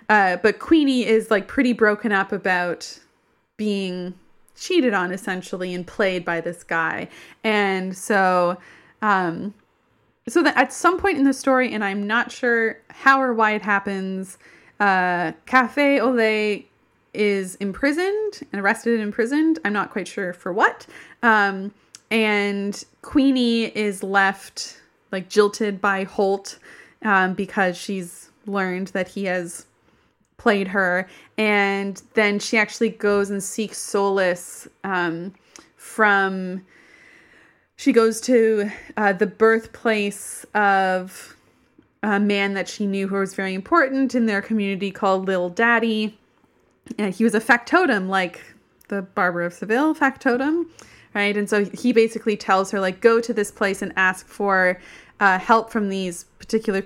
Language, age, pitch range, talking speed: English, 20-39, 190-230 Hz, 140 wpm